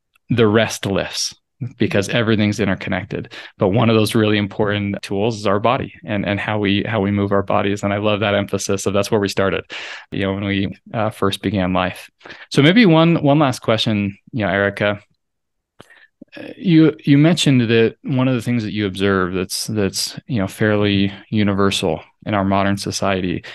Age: 20-39